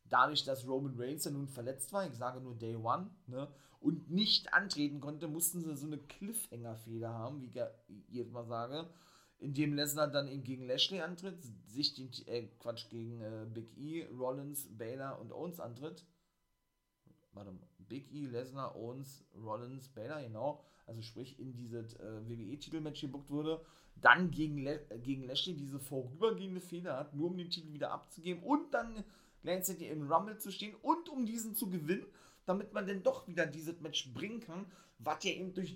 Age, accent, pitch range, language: 40-59, German, 125-165 Hz, German